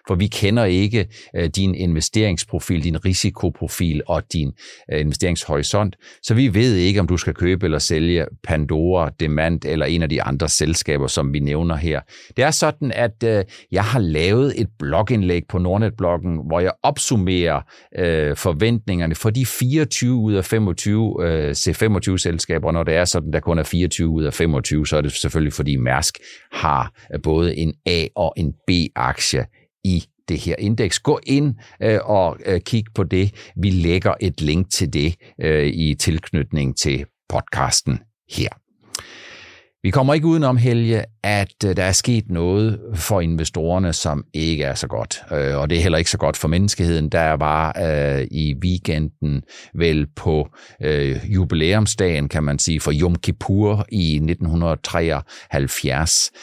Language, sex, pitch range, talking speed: Danish, male, 80-100 Hz, 150 wpm